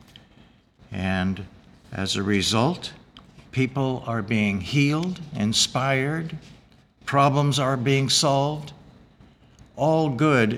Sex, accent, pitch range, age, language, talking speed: male, American, 110-135 Hz, 60-79, English, 85 wpm